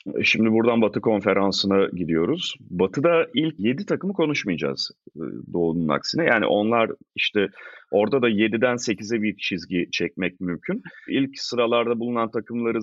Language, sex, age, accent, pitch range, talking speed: Turkish, male, 40-59, native, 95-120 Hz, 125 wpm